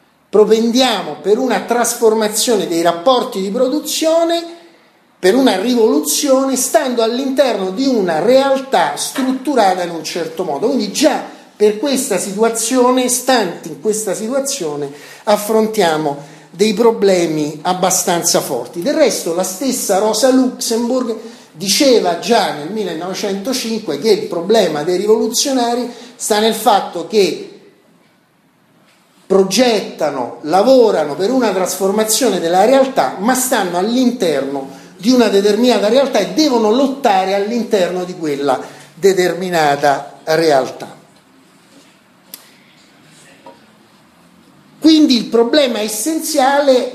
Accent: native